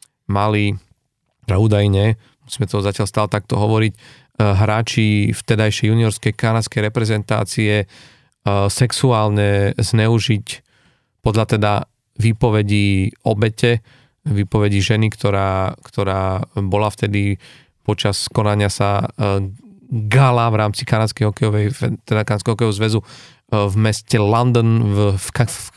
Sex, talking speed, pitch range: male, 95 wpm, 105-120 Hz